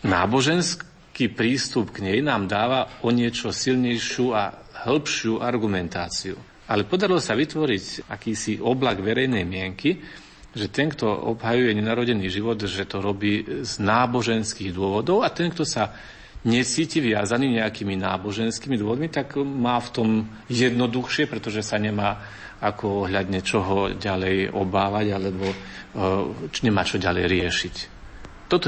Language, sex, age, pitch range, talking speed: Slovak, male, 40-59, 100-125 Hz, 125 wpm